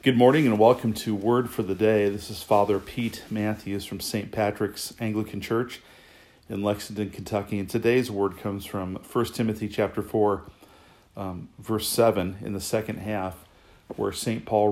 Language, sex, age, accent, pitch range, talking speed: English, male, 40-59, American, 95-110 Hz, 165 wpm